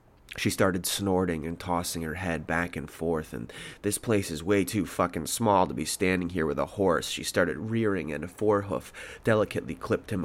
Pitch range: 85-105 Hz